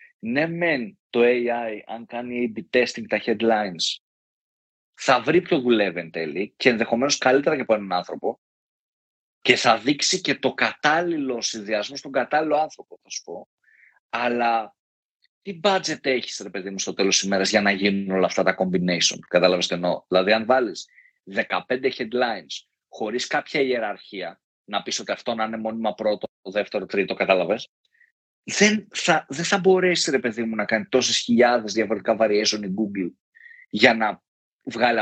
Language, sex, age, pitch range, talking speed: Greek, male, 30-49, 110-150 Hz, 160 wpm